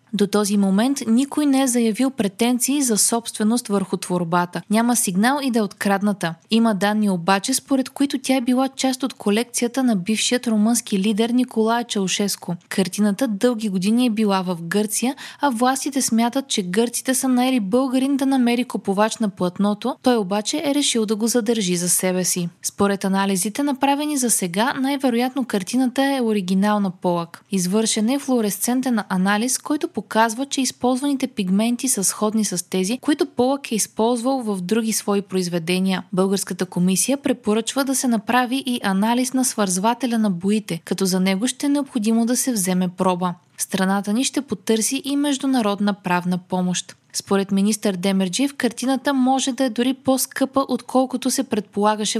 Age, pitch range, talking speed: 20-39, 195-255 Hz, 160 wpm